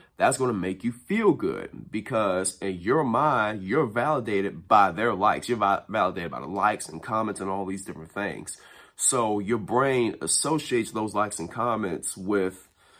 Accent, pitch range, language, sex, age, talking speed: American, 90-110 Hz, English, male, 30-49, 170 wpm